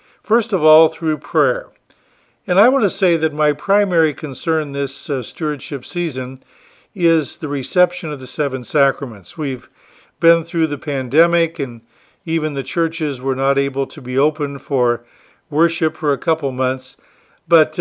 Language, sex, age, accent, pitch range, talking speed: English, male, 50-69, American, 135-170 Hz, 160 wpm